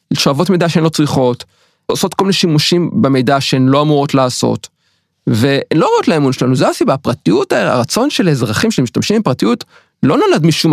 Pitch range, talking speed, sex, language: 130-170 Hz, 170 wpm, male, Hebrew